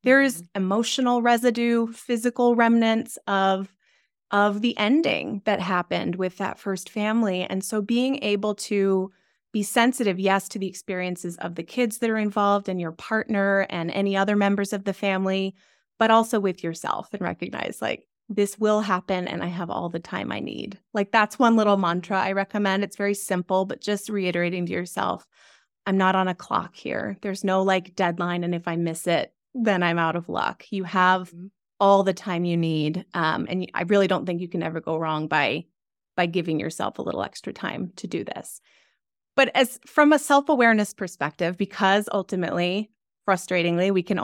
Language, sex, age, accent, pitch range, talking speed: English, female, 20-39, American, 185-225 Hz, 185 wpm